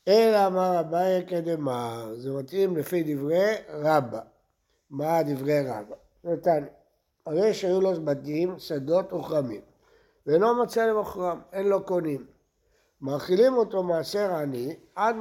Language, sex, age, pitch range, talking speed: Hebrew, male, 60-79, 155-220 Hz, 120 wpm